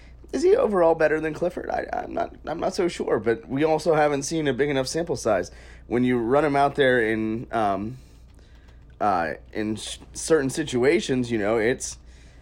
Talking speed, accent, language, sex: 190 wpm, American, English, male